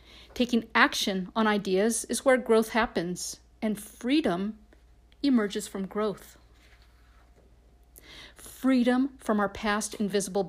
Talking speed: 105 wpm